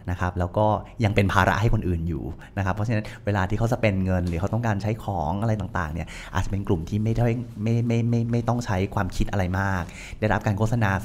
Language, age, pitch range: Thai, 20-39, 90-115 Hz